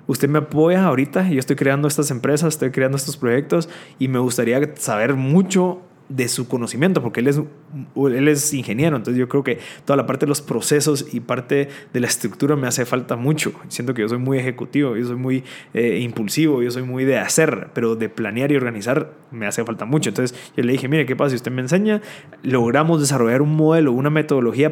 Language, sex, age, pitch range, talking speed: Spanish, male, 20-39, 125-155 Hz, 215 wpm